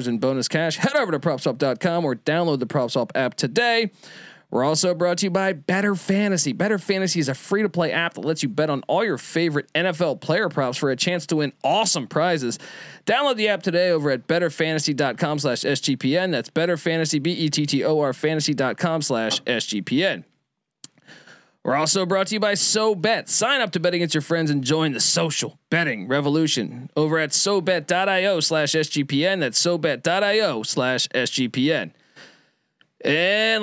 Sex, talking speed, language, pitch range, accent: male, 170 wpm, English, 140-190 Hz, American